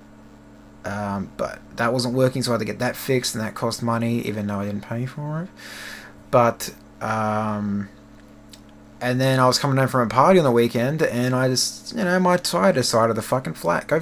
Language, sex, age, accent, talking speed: English, male, 20-39, Australian, 215 wpm